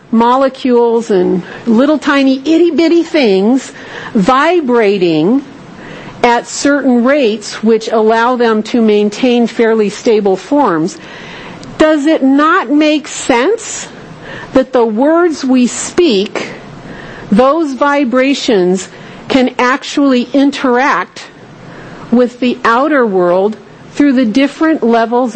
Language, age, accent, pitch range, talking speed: English, 50-69, American, 210-285 Hz, 95 wpm